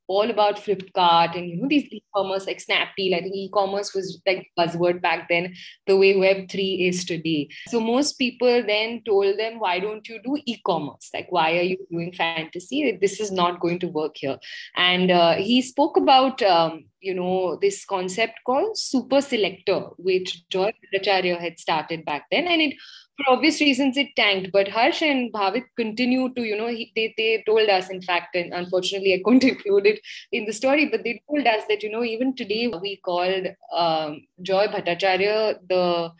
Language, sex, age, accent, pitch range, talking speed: English, female, 20-39, Indian, 185-245 Hz, 190 wpm